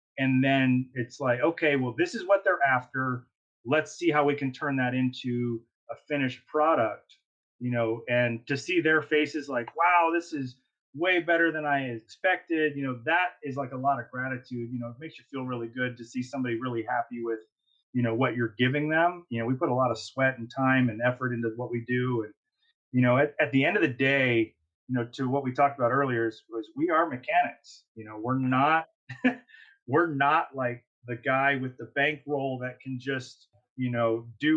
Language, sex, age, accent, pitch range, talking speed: English, male, 30-49, American, 120-150 Hz, 215 wpm